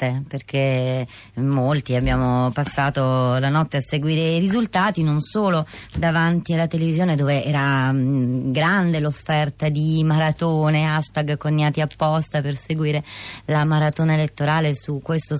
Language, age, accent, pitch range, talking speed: Italian, 30-49, native, 145-170 Hz, 120 wpm